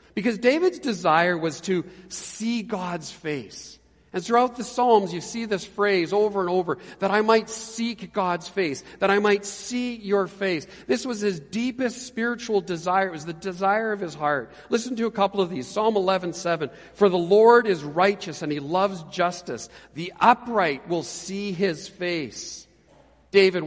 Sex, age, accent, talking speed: male, 50-69, American, 175 wpm